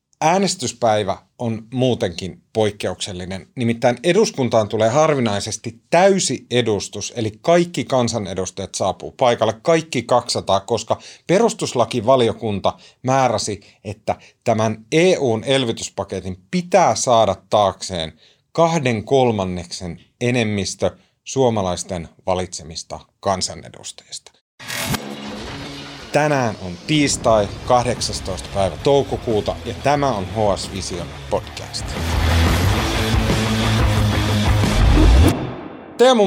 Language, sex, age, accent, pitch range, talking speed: Finnish, male, 30-49, native, 100-140 Hz, 75 wpm